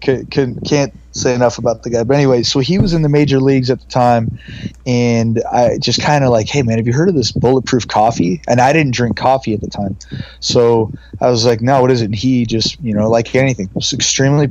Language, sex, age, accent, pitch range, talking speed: English, male, 20-39, American, 115-130 Hz, 245 wpm